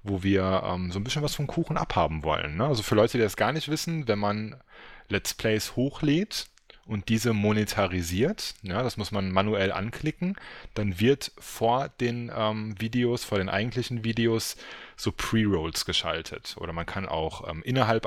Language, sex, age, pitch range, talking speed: English, male, 30-49, 100-135 Hz, 170 wpm